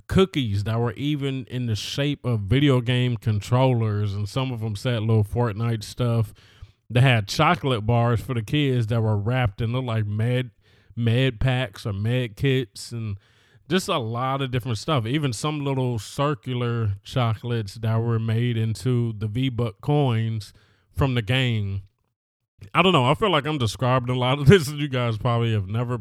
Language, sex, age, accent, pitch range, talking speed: English, male, 20-39, American, 110-130 Hz, 180 wpm